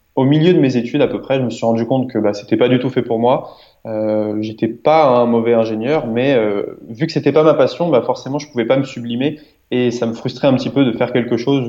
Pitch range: 115-135 Hz